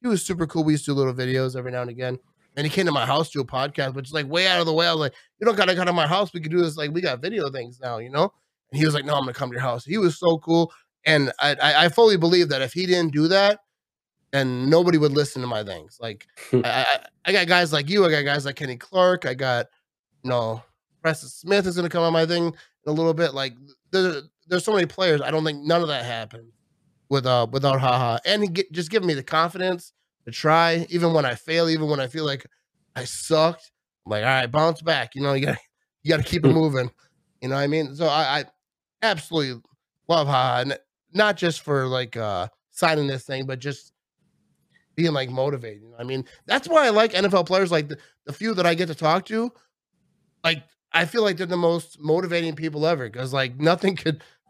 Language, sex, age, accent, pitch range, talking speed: English, male, 30-49, American, 135-175 Hz, 255 wpm